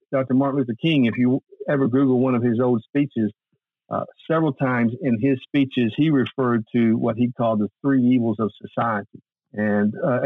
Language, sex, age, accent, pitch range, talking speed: English, male, 50-69, American, 110-130 Hz, 185 wpm